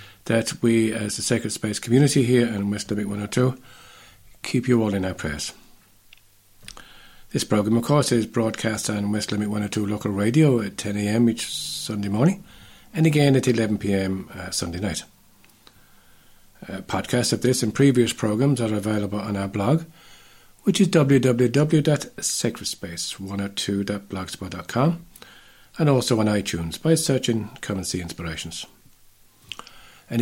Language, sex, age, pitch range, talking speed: English, male, 50-69, 105-130 Hz, 135 wpm